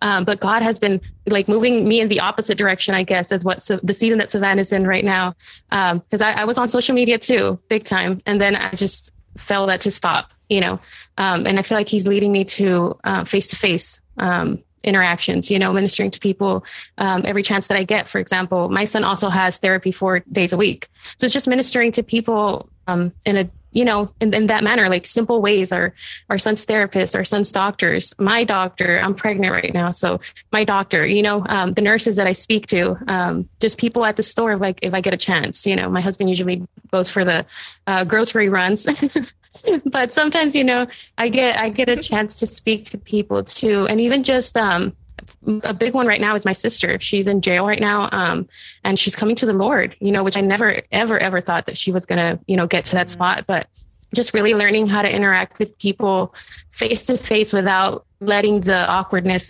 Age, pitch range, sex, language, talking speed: 20-39, 190-220 Hz, female, English, 225 wpm